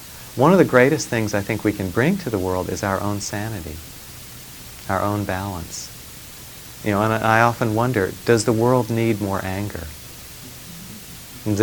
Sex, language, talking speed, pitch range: male, English, 170 wpm, 95-115 Hz